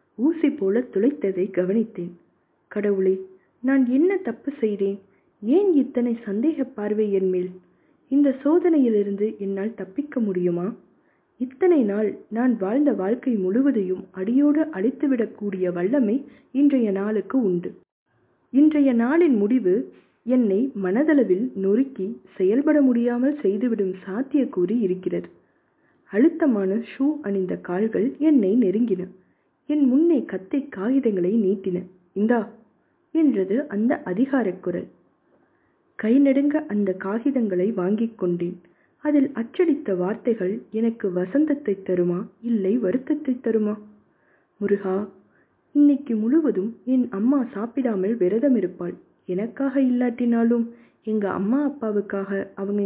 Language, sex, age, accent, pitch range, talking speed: Tamil, female, 20-39, native, 195-270 Hz, 95 wpm